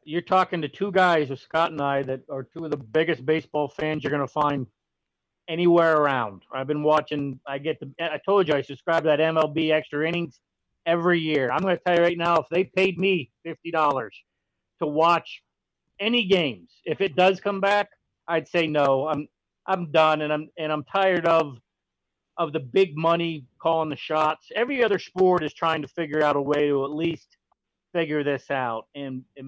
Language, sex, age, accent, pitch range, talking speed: English, male, 50-69, American, 150-175 Hz, 200 wpm